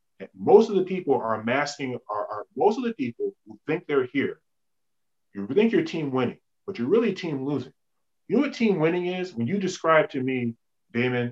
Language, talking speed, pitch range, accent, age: English, 190 wpm, 125-200 Hz, American, 30-49